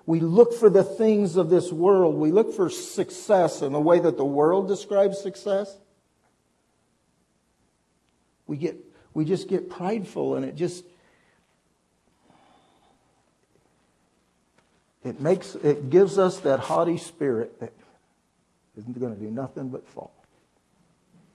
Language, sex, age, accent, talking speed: English, male, 60-79, American, 125 wpm